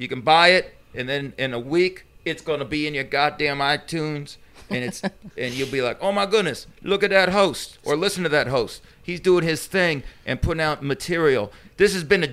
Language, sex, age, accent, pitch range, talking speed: English, male, 40-59, American, 140-175 Hz, 230 wpm